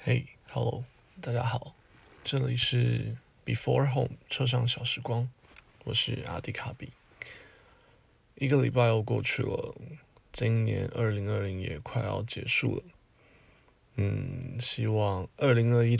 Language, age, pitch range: Chinese, 20-39, 110-125 Hz